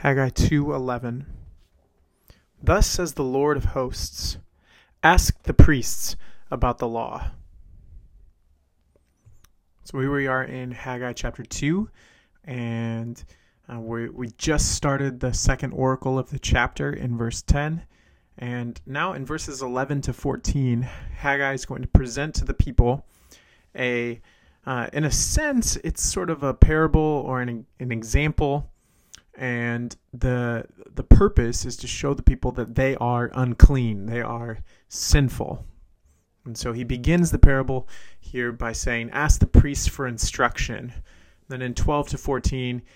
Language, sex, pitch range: English, male, 110-135 Hz